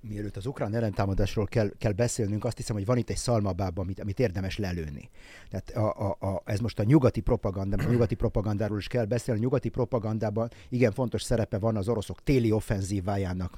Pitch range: 100-125 Hz